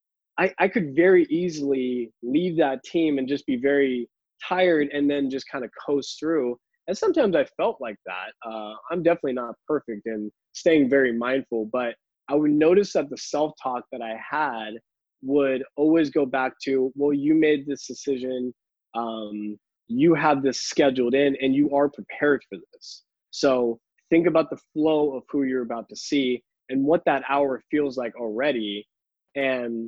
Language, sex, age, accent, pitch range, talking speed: English, male, 20-39, American, 120-155 Hz, 175 wpm